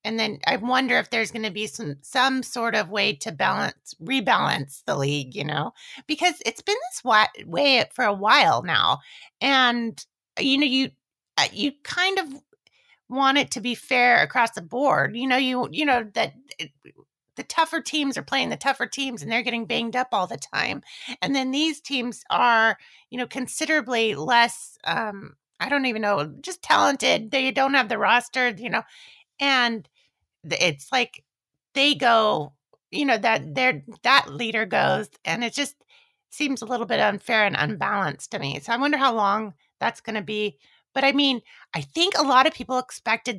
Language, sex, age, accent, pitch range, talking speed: English, female, 40-59, American, 220-275 Hz, 185 wpm